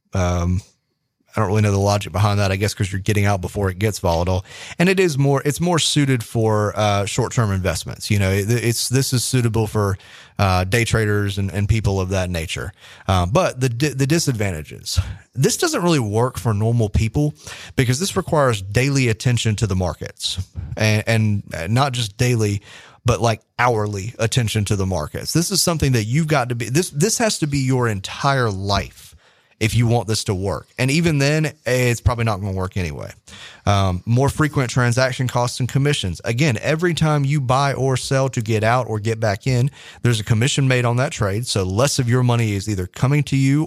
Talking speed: 210 wpm